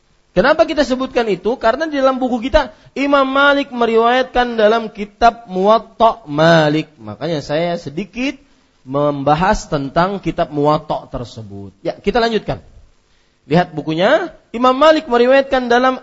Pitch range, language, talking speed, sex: 135-225 Hz, Malay, 125 wpm, male